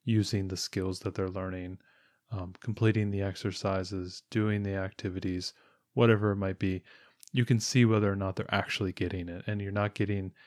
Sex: male